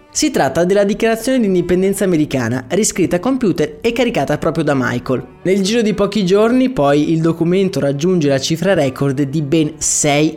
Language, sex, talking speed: Italian, male, 175 wpm